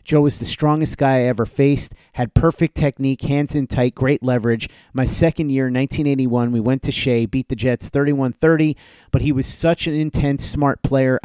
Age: 30-49